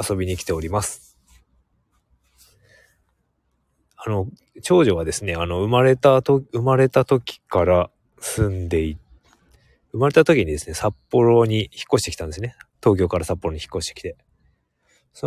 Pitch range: 85-115 Hz